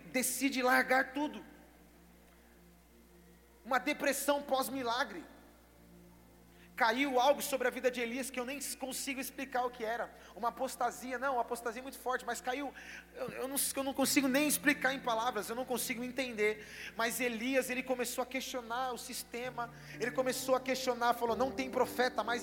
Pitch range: 230-260 Hz